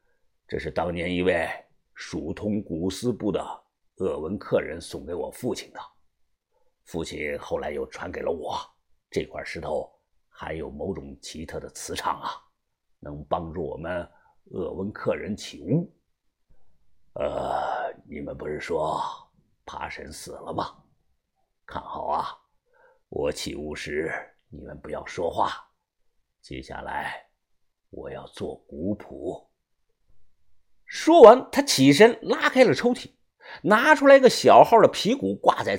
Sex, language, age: male, Chinese, 50-69